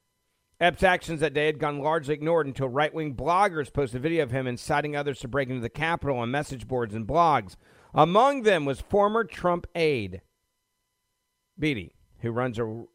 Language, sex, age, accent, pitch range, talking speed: English, male, 50-69, American, 105-145 Hz, 175 wpm